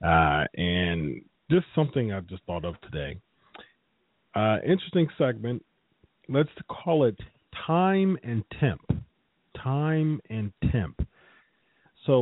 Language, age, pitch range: English, 40-59, 95-130 Hz